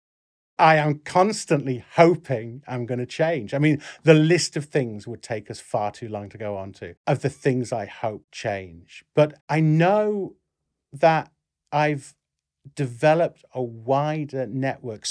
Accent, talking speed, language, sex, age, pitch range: British, 155 wpm, English, male, 40-59, 105-145 Hz